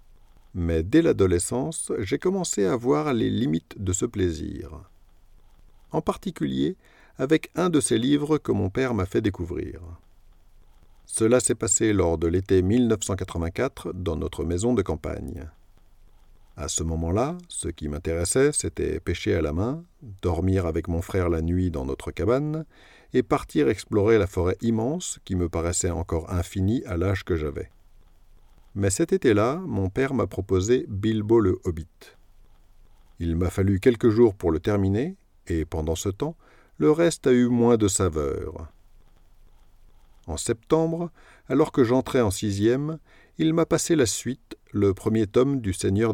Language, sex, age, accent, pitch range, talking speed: French, male, 50-69, French, 90-125 Hz, 155 wpm